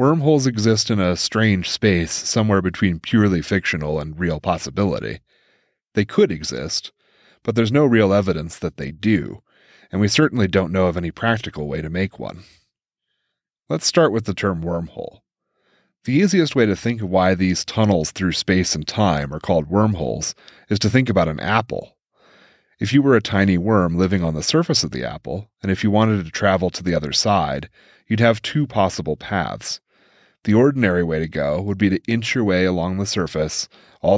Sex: male